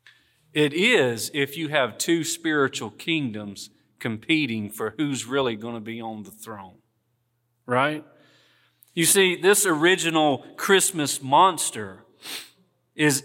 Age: 40-59